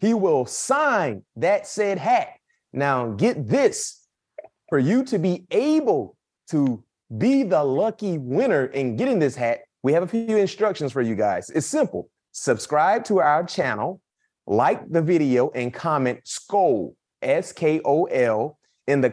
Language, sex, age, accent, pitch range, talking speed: English, male, 30-49, American, 130-185 Hz, 150 wpm